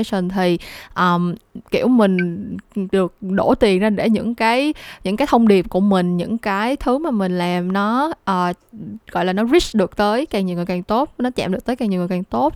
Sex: female